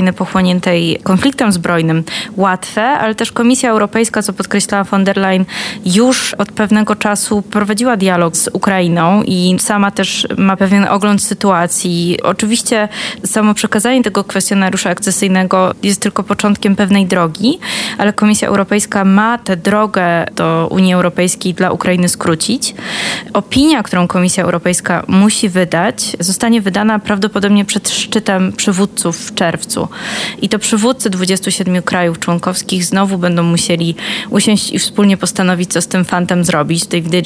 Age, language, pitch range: 20-39, Polish, 180-210 Hz